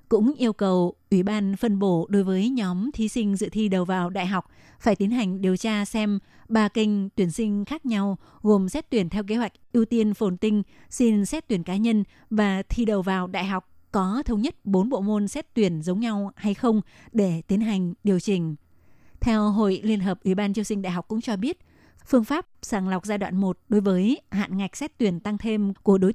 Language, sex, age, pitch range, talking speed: Vietnamese, female, 20-39, 195-225 Hz, 225 wpm